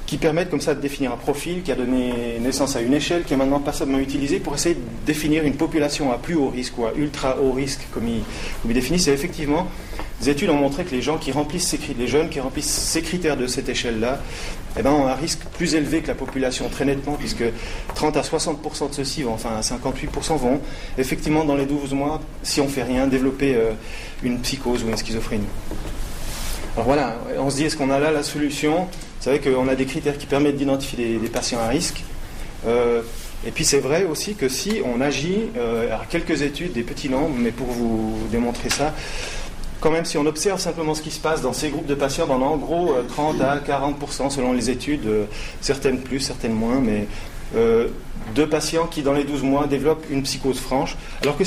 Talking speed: 220 wpm